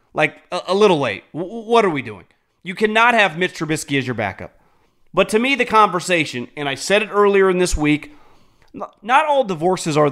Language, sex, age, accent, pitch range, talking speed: English, male, 30-49, American, 160-240 Hz, 195 wpm